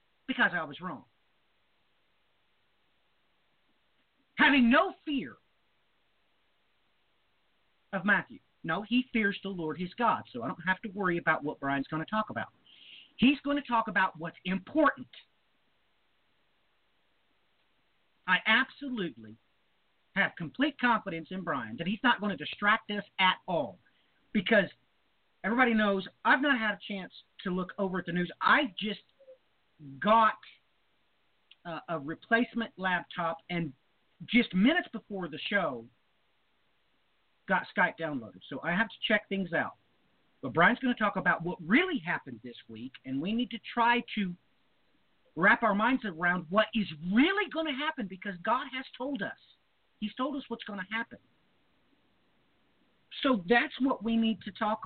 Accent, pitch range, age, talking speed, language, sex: American, 180-250 Hz, 40-59, 150 wpm, English, male